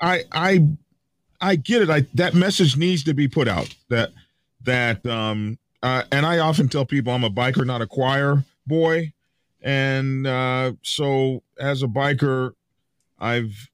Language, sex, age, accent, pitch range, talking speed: English, male, 40-59, American, 110-140 Hz, 155 wpm